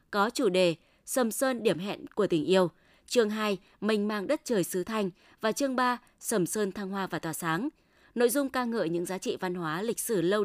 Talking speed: 230 wpm